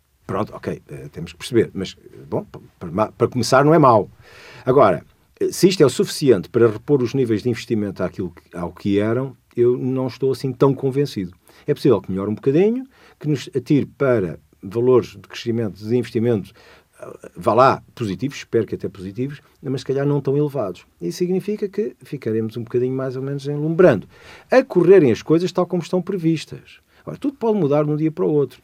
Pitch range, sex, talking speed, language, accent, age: 105-150 Hz, male, 185 wpm, Portuguese, Portuguese, 50-69